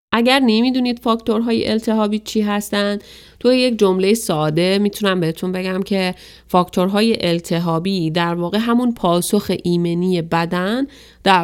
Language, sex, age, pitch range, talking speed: Persian, female, 30-49, 165-195 Hz, 120 wpm